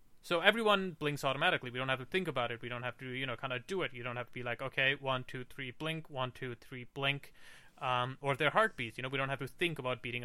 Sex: male